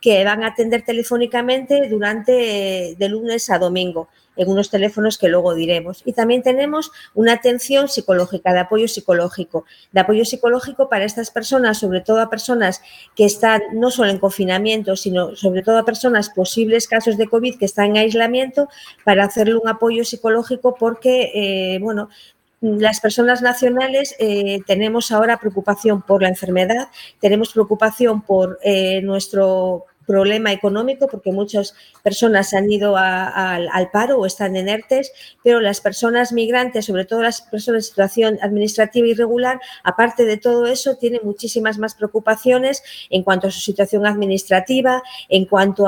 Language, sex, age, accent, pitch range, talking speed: Spanish, female, 40-59, Spanish, 200-235 Hz, 155 wpm